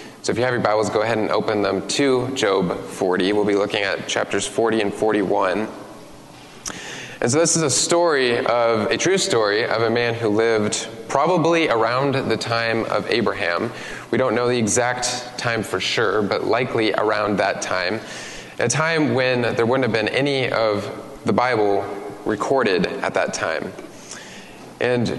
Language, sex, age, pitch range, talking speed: English, male, 20-39, 105-125 Hz, 170 wpm